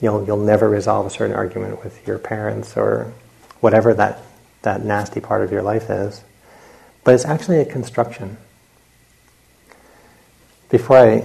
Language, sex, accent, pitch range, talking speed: English, male, American, 105-120 Hz, 145 wpm